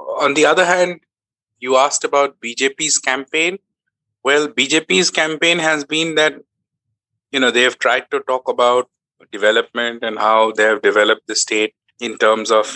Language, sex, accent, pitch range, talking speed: English, male, Indian, 110-155 Hz, 160 wpm